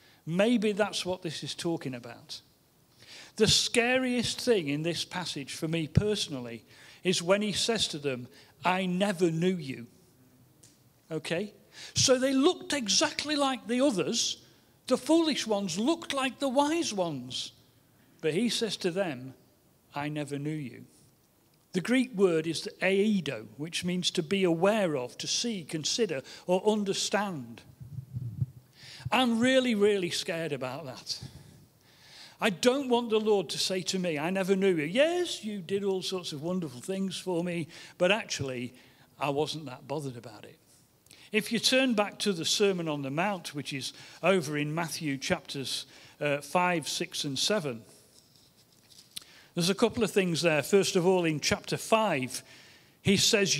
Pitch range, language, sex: 140-205 Hz, English, male